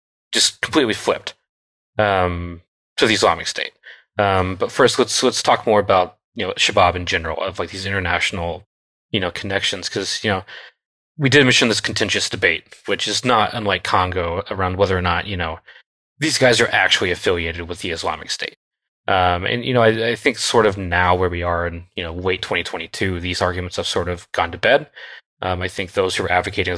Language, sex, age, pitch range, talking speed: English, male, 30-49, 85-100 Hz, 200 wpm